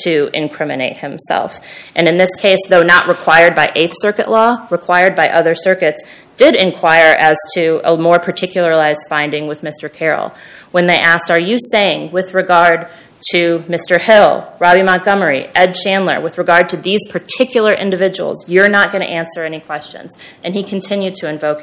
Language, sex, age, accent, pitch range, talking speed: English, female, 20-39, American, 160-195 Hz, 170 wpm